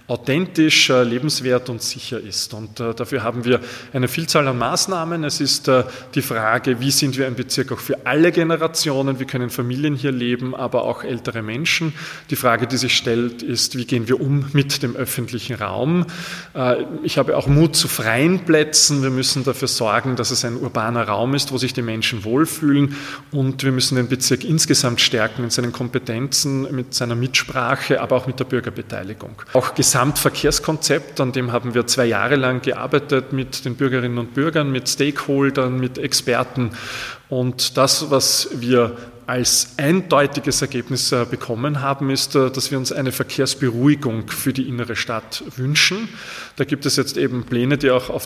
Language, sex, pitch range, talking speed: German, male, 120-145 Hz, 170 wpm